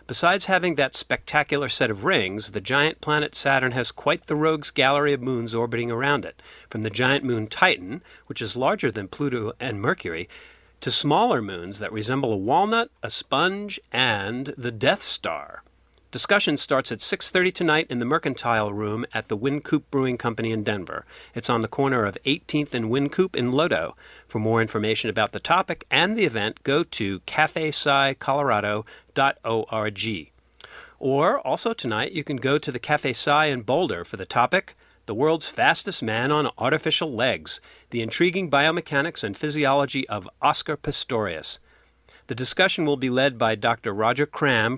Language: English